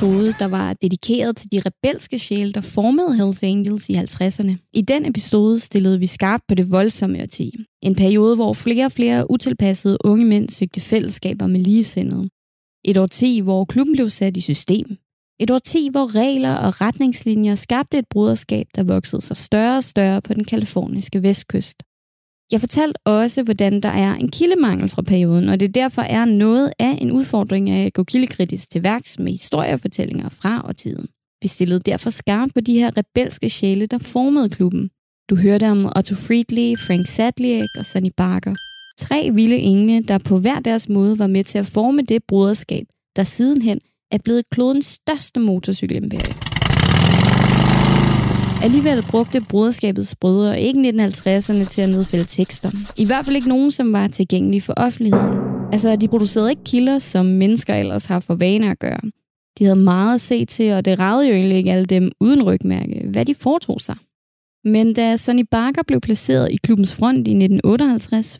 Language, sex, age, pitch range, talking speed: English, female, 20-39, 195-240 Hz, 175 wpm